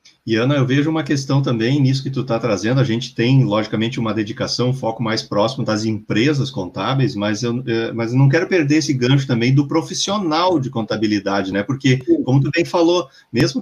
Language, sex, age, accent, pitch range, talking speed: Portuguese, male, 40-59, Brazilian, 115-150 Hz, 205 wpm